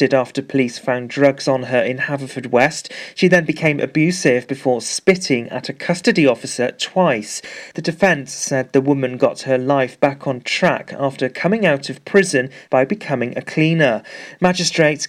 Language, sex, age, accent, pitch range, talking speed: English, male, 40-59, British, 130-165 Hz, 165 wpm